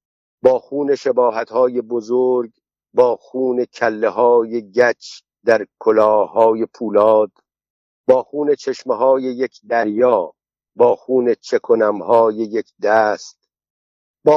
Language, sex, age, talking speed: Persian, male, 50-69, 100 wpm